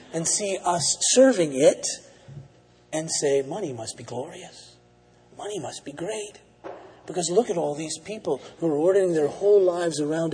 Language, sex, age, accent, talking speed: English, male, 40-59, American, 165 wpm